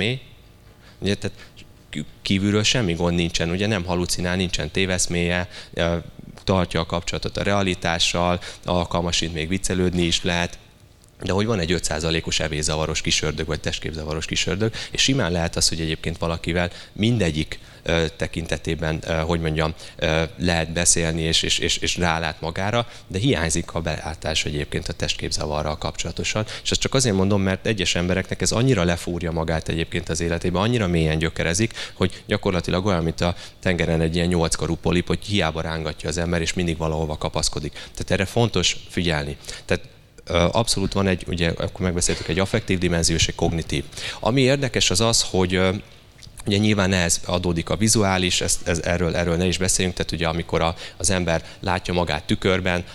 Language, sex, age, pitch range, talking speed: Hungarian, male, 20-39, 80-95 Hz, 160 wpm